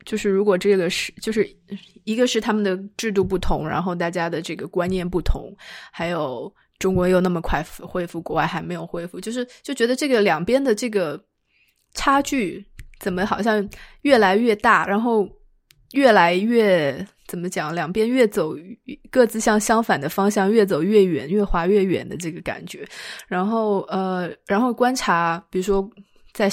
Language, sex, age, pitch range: Chinese, female, 20-39, 180-215 Hz